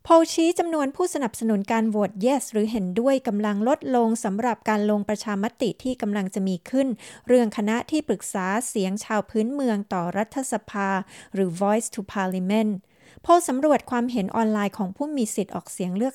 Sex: female